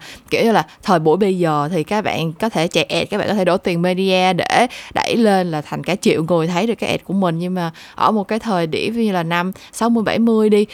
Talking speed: 275 wpm